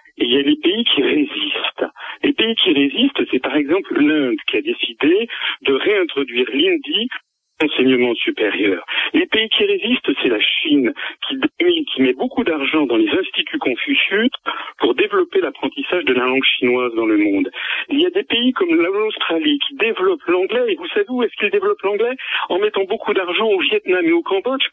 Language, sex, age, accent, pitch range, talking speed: French, male, 50-69, French, 250-370 Hz, 185 wpm